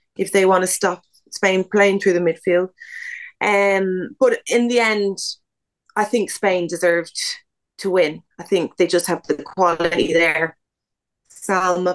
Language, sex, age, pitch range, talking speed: English, female, 30-49, 180-215 Hz, 150 wpm